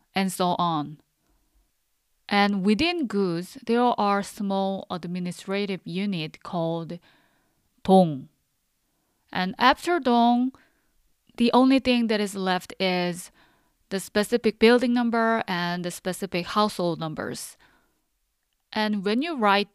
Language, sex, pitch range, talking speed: English, female, 175-225 Hz, 110 wpm